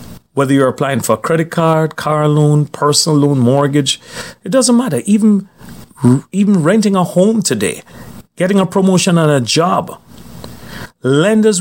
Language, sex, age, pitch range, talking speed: English, male, 40-59, 130-180 Hz, 145 wpm